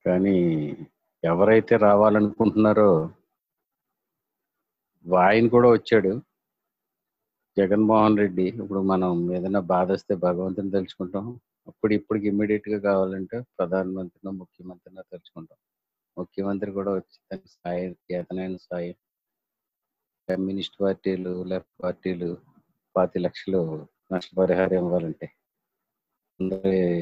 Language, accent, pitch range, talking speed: Telugu, native, 95-110 Hz, 80 wpm